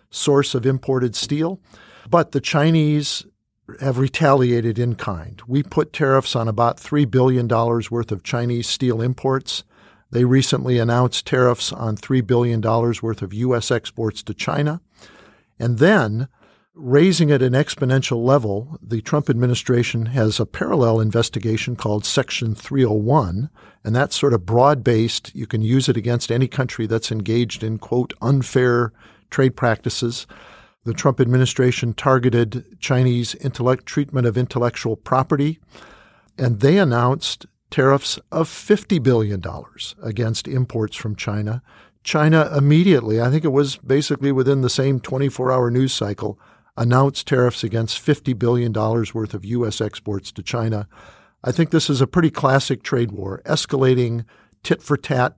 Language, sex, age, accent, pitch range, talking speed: English, male, 50-69, American, 115-140 Hz, 140 wpm